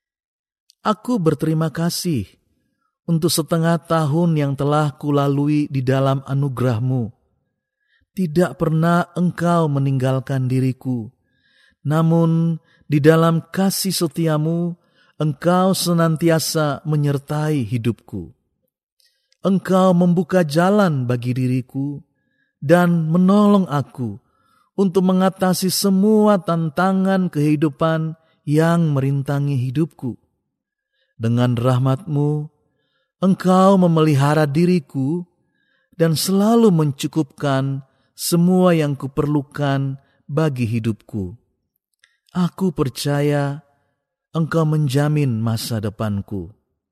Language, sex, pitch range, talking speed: Indonesian, male, 135-170 Hz, 80 wpm